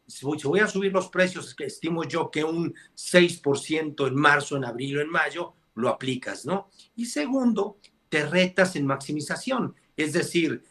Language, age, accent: Spanish, 50-69, Mexican